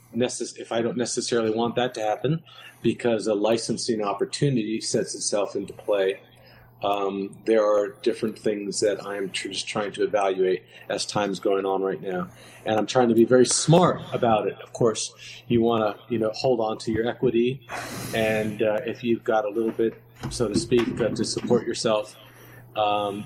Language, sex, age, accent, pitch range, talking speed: English, male, 40-59, American, 105-125 Hz, 185 wpm